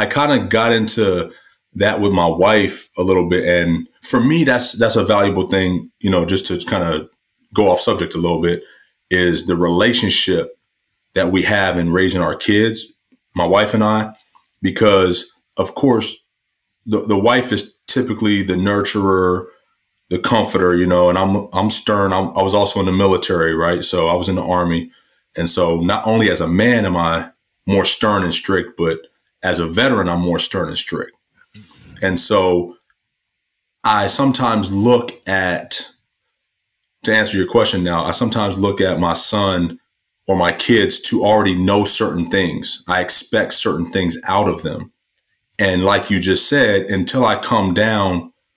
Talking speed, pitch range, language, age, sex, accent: 175 wpm, 90-105 Hz, English, 30-49, male, American